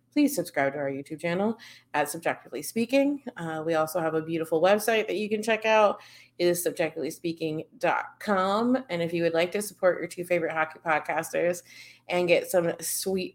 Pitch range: 165-195 Hz